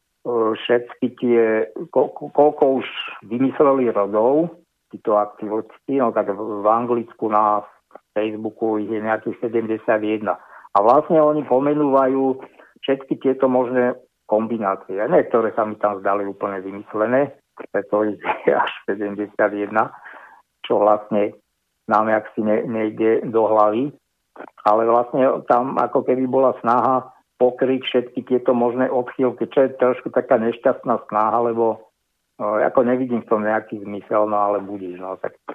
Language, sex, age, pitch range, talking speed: Slovak, male, 60-79, 105-130 Hz, 135 wpm